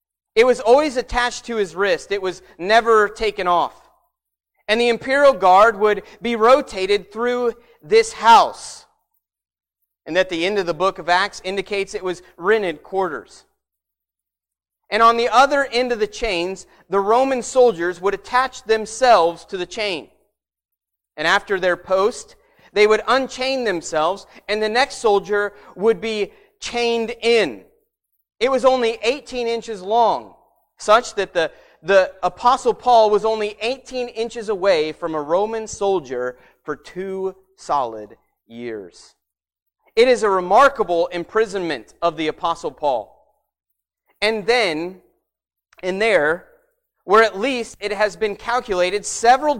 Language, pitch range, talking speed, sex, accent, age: English, 175-235 Hz, 140 wpm, male, American, 30-49